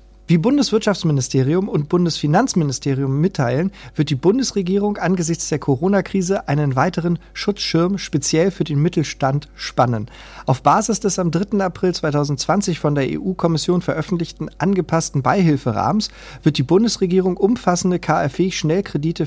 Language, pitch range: German, 140-185 Hz